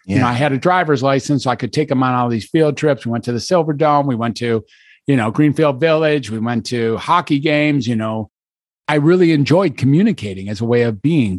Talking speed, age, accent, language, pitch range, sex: 240 wpm, 50-69, American, English, 120-155 Hz, male